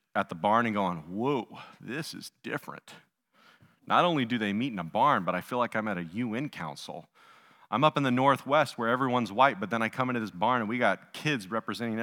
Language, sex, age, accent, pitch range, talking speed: English, male, 40-59, American, 115-170 Hz, 230 wpm